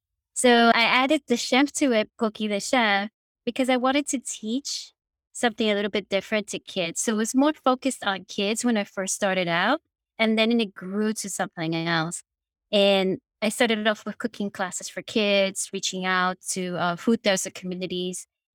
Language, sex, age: English, female, 20-39